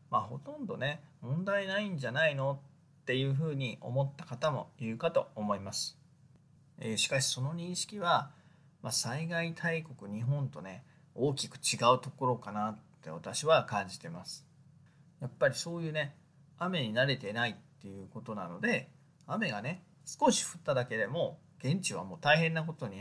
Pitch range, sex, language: 130-160 Hz, male, Japanese